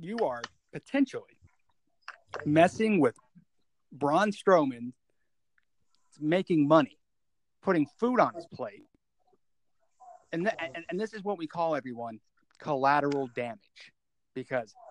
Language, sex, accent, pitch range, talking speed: English, male, American, 140-195 Hz, 110 wpm